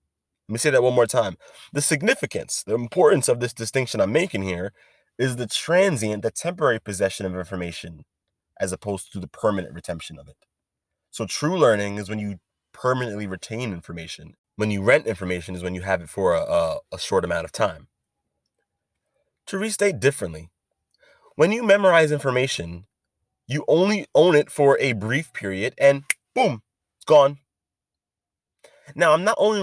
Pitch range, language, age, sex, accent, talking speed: 95-150 Hz, English, 20-39, male, American, 165 wpm